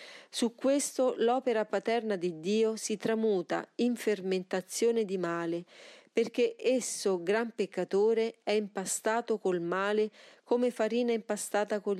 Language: Italian